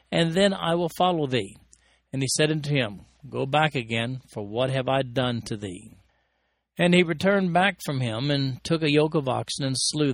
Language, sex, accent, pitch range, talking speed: English, male, American, 115-155 Hz, 205 wpm